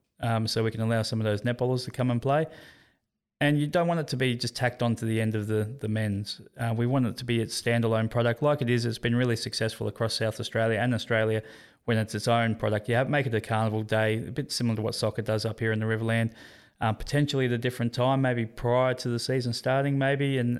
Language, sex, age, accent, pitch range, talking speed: English, male, 20-39, Australian, 110-125 Hz, 260 wpm